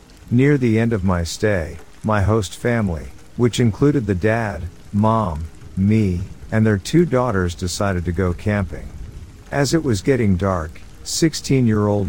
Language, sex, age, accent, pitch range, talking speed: English, male, 50-69, American, 90-120 Hz, 155 wpm